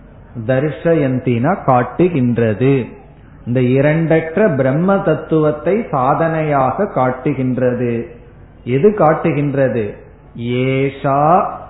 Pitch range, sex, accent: 130-165 Hz, male, native